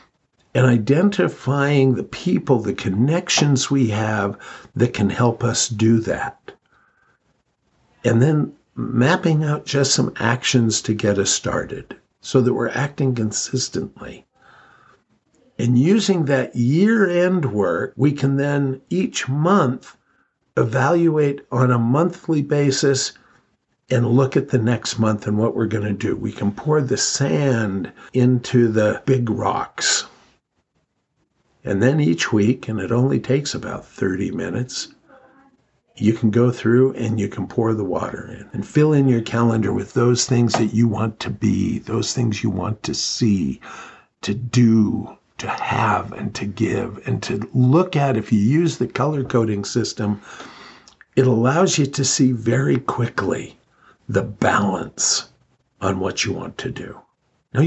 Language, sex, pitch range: English, male, 110-140 Hz